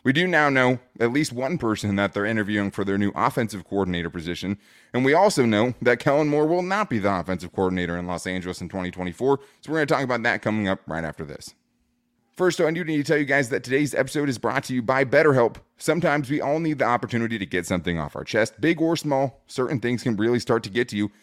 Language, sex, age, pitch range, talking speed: English, male, 20-39, 100-140 Hz, 250 wpm